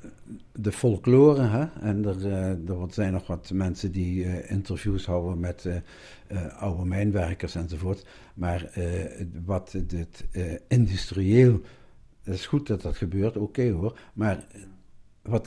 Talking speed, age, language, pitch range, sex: 130 wpm, 60-79, Dutch, 90-105 Hz, male